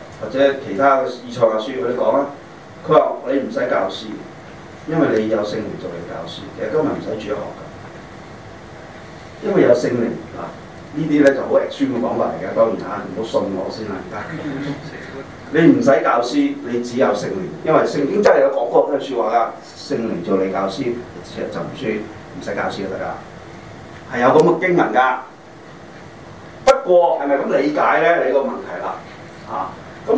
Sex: male